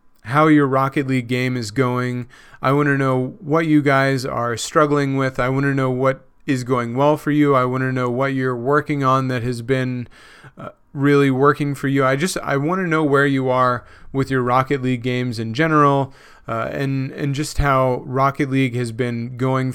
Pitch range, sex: 130-145 Hz, male